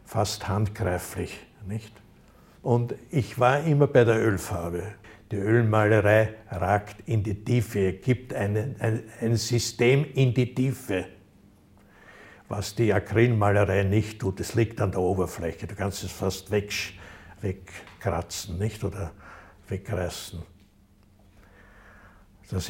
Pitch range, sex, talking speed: 95-110 Hz, male, 115 wpm